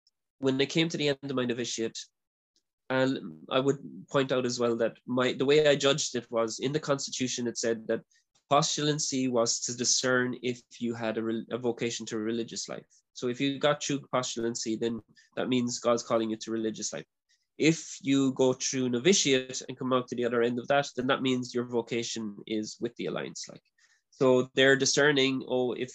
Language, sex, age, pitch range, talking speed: English, male, 20-39, 120-140 Hz, 205 wpm